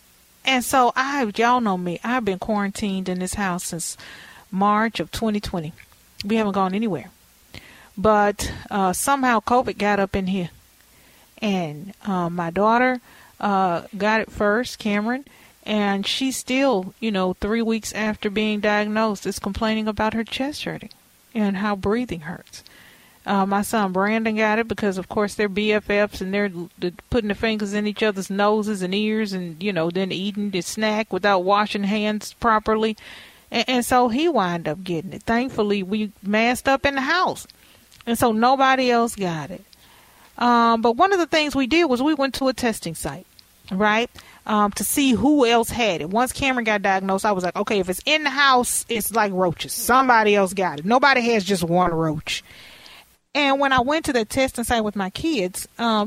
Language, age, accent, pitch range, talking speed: English, 40-59, American, 195-240 Hz, 185 wpm